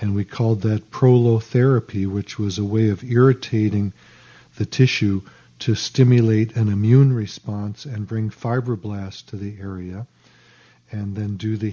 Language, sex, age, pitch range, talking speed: English, male, 50-69, 105-125 Hz, 145 wpm